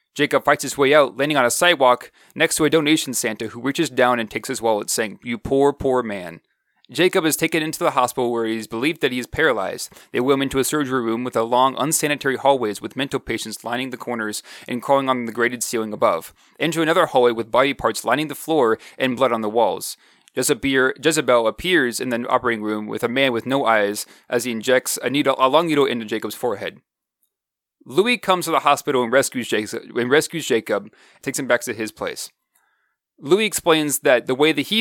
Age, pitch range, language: 30-49, 115-150 Hz, English